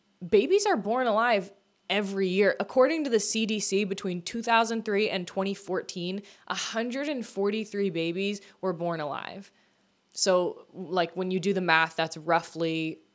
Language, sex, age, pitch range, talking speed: English, female, 20-39, 185-235 Hz, 130 wpm